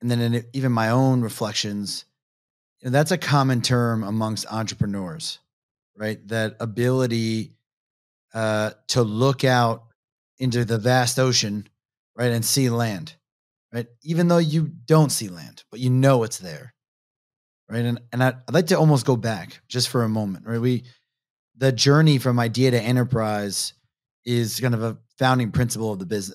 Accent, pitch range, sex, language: American, 115-145 Hz, male, English